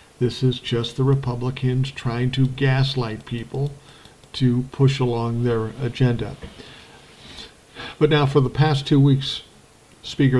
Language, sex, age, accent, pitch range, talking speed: English, male, 50-69, American, 120-140 Hz, 125 wpm